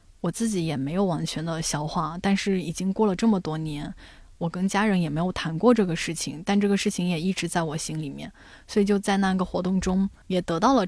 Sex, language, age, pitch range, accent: female, Chinese, 10-29, 170-200 Hz, native